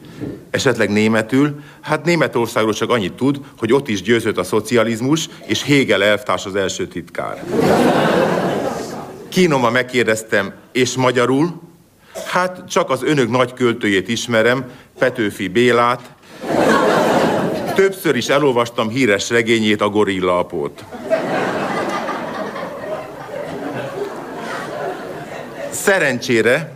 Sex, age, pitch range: male, 50-69, 110-145 Hz